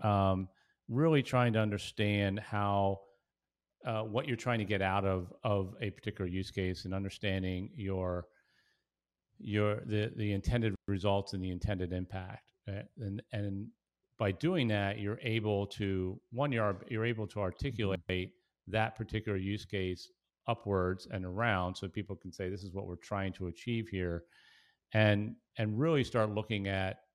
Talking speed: 155 wpm